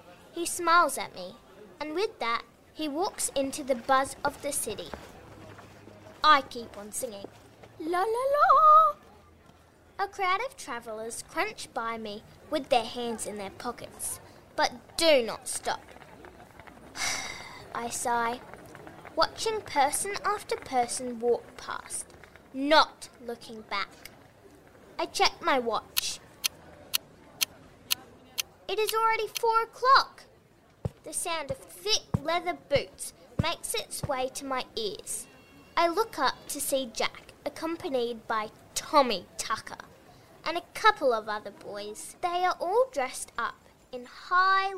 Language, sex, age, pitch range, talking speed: English, female, 10-29, 245-375 Hz, 125 wpm